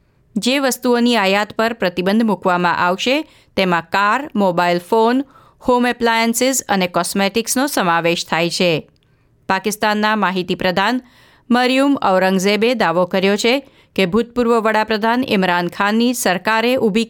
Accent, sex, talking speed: native, female, 100 wpm